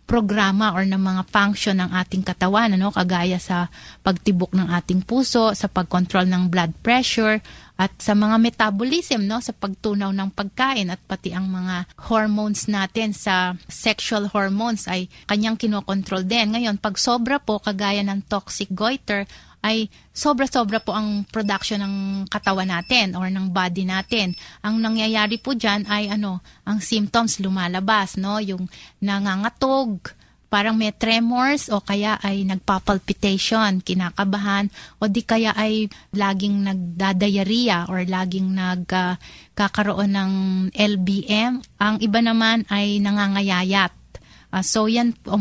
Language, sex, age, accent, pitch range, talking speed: Filipino, female, 30-49, native, 190-220 Hz, 135 wpm